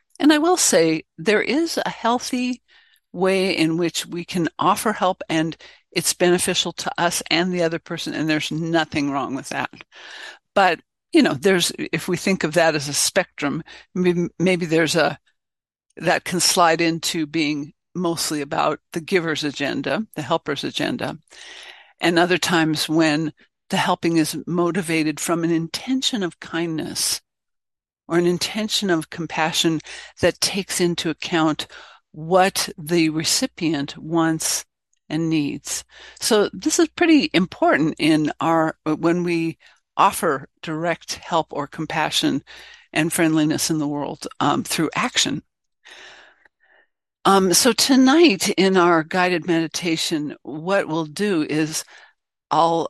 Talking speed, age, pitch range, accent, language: 135 wpm, 60-79, 160-190 Hz, American, English